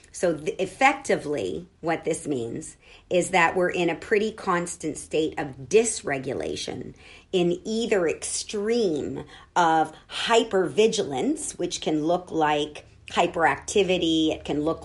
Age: 50-69